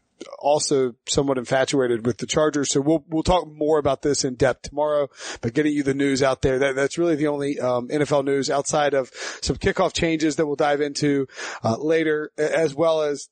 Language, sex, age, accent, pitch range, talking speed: English, male, 30-49, American, 135-160 Hz, 205 wpm